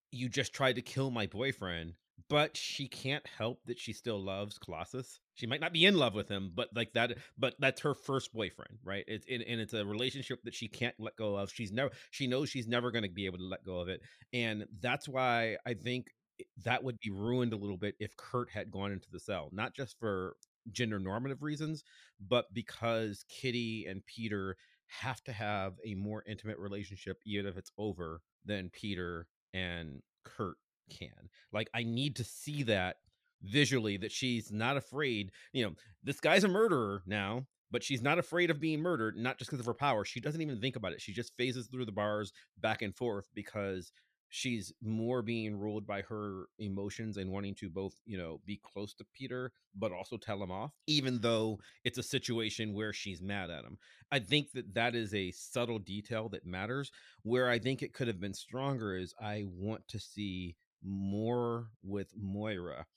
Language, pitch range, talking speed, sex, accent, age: English, 100-125 Hz, 200 wpm, male, American, 30-49